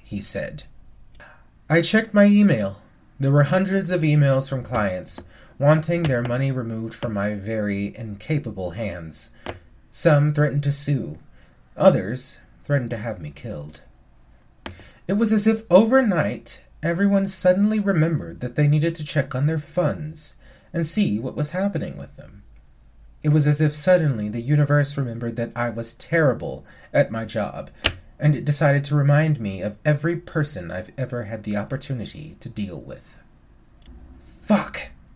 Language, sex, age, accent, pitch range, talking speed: English, male, 30-49, American, 110-155 Hz, 150 wpm